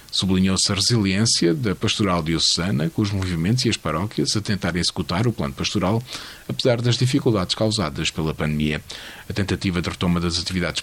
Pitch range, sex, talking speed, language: 90-120 Hz, male, 165 wpm, Portuguese